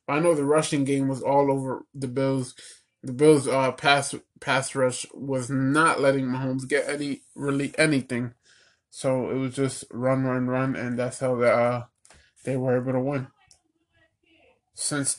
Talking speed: 165 wpm